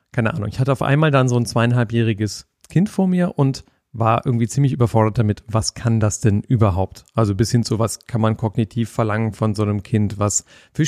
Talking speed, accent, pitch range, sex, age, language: 215 wpm, German, 105-135 Hz, male, 40-59, German